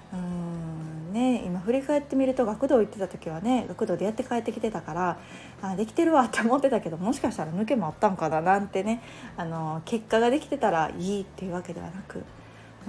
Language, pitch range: Japanese, 180-240 Hz